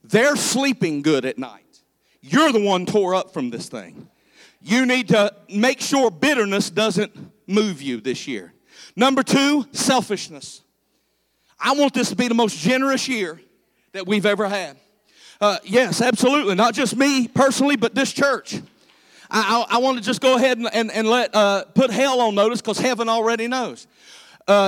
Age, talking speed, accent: 40-59, 175 wpm, American